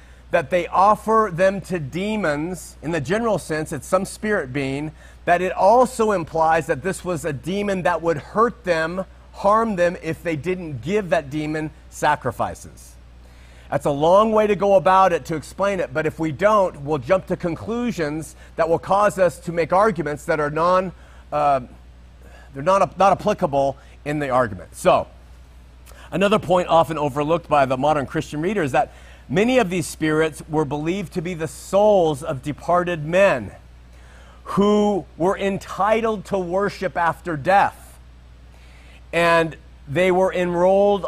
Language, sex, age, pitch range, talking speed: English, male, 40-59, 145-185 Hz, 160 wpm